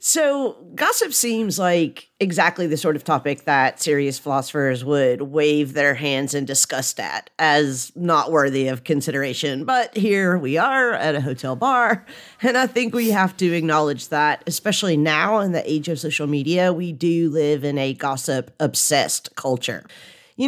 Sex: female